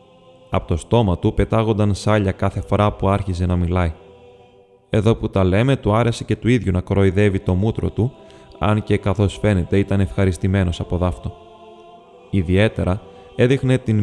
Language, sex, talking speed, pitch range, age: Greek, male, 160 wpm, 95-115 Hz, 20-39